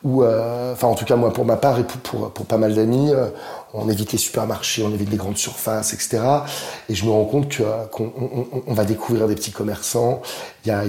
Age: 30-49